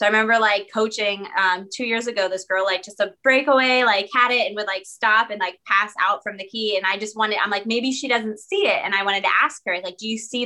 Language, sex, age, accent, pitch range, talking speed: English, female, 20-39, American, 190-230 Hz, 285 wpm